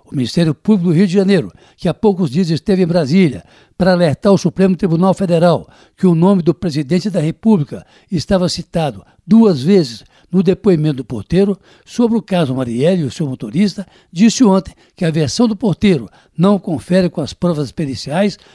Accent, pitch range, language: Brazilian, 160-200 Hz, Portuguese